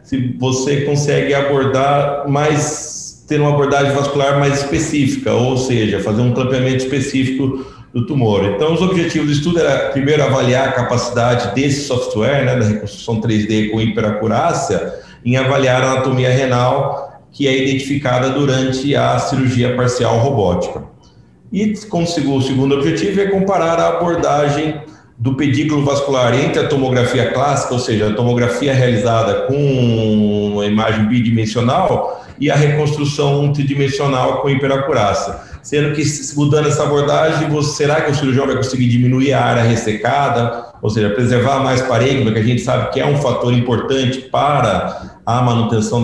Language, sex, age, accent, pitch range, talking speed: Portuguese, male, 40-59, Brazilian, 120-145 Hz, 145 wpm